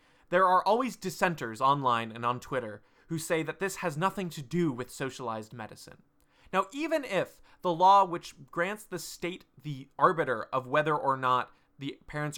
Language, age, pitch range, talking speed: English, 20-39, 130-180 Hz, 175 wpm